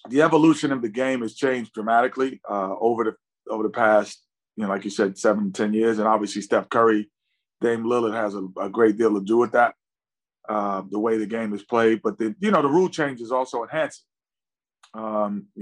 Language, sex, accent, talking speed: English, male, American, 210 wpm